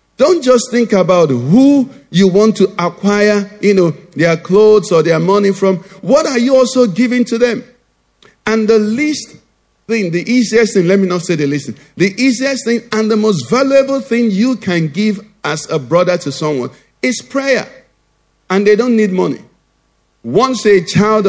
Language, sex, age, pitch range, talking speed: English, male, 50-69, 165-220 Hz, 180 wpm